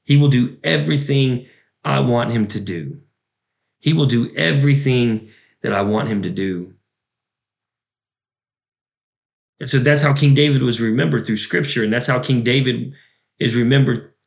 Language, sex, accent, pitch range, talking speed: English, male, American, 110-135 Hz, 150 wpm